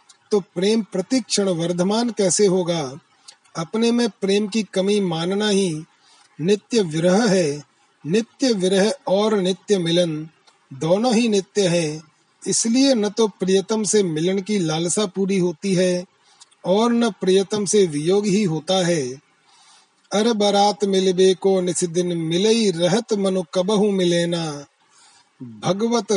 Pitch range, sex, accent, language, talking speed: 175-215 Hz, male, native, Hindi, 130 wpm